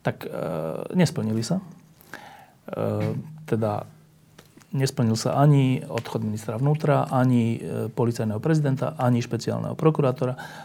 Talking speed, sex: 100 wpm, male